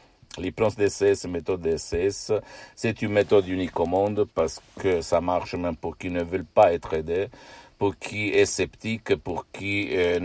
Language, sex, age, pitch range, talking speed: Italian, male, 60-79, 85-100 Hz, 170 wpm